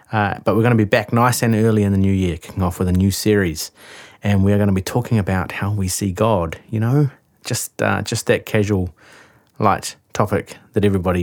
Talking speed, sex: 230 wpm, male